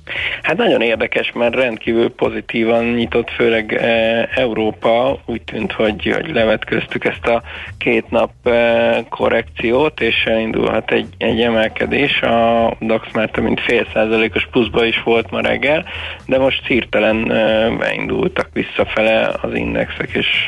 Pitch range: 110-120 Hz